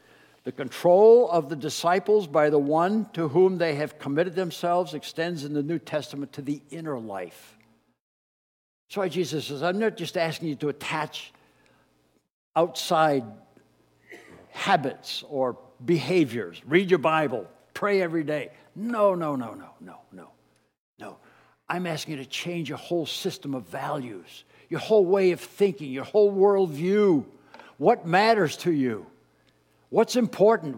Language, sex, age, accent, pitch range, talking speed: English, male, 60-79, American, 145-205 Hz, 145 wpm